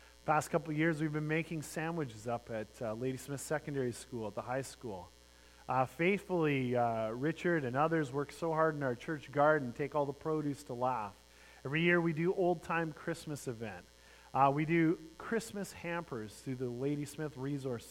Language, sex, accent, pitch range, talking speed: English, male, American, 125-175 Hz, 185 wpm